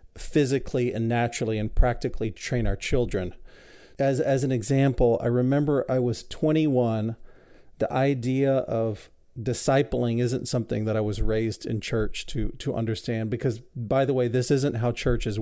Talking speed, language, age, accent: 160 wpm, English, 40-59, American